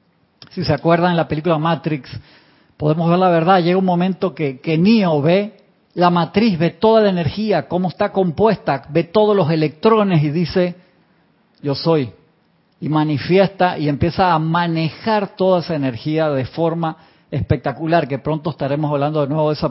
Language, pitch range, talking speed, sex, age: Spanish, 145-175 Hz, 165 wpm, male, 40-59